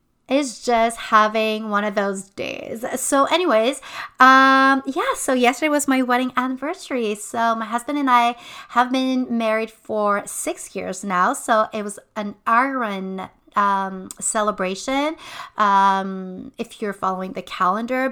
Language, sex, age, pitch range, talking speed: English, female, 30-49, 205-255 Hz, 140 wpm